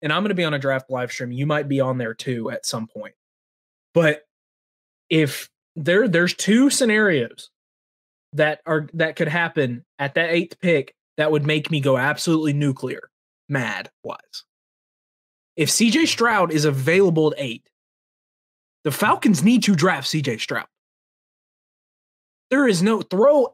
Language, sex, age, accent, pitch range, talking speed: English, male, 20-39, American, 150-200 Hz, 155 wpm